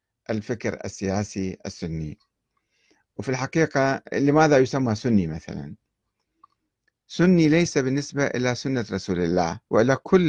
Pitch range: 105-145 Hz